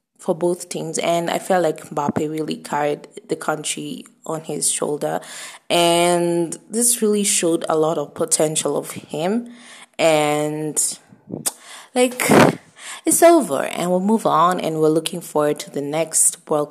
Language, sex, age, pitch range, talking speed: English, female, 20-39, 165-235 Hz, 145 wpm